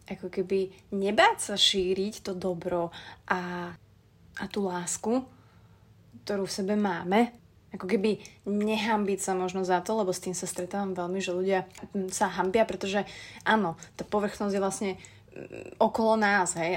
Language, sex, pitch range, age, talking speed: Slovak, female, 180-210 Hz, 20-39, 145 wpm